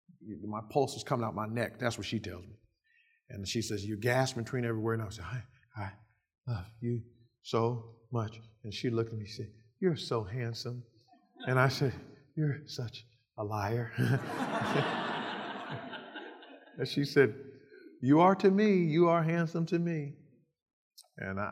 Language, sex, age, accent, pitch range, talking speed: English, male, 50-69, American, 110-130 Hz, 160 wpm